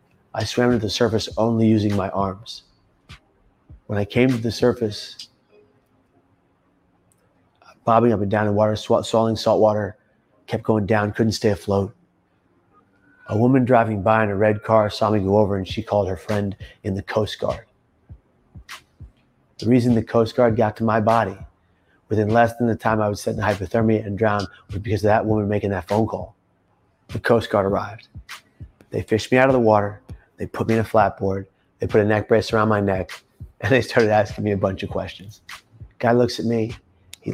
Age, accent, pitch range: 30-49, American, 100-115 Hz